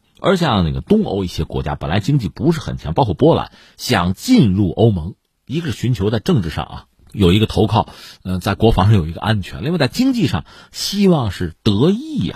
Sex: male